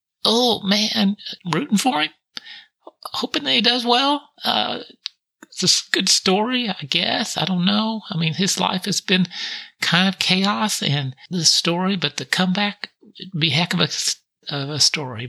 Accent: American